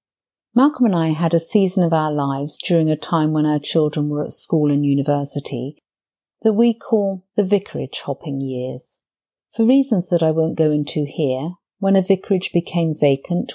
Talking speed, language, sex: 175 wpm, English, female